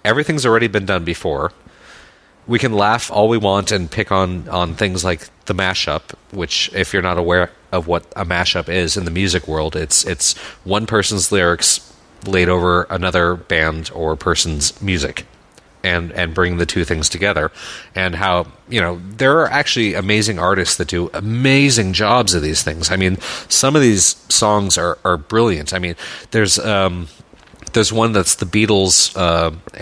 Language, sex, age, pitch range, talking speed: English, male, 30-49, 85-105 Hz, 175 wpm